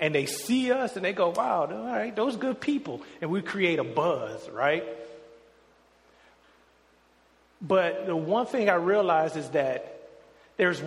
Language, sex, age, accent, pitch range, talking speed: English, male, 40-59, American, 135-215 Hz, 155 wpm